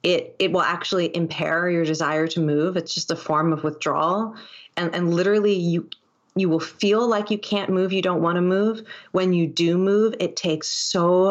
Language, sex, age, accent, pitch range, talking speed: English, female, 30-49, American, 160-185 Hz, 200 wpm